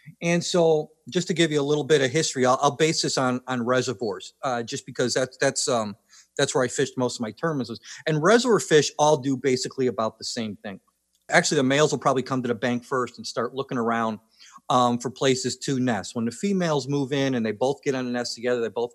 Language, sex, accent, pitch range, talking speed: English, male, American, 125-155 Hz, 240 wpm